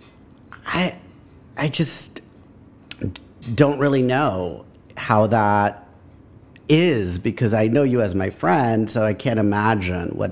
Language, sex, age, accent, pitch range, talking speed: English, male, 50-69, American, 95-125 Hz, 120 wpm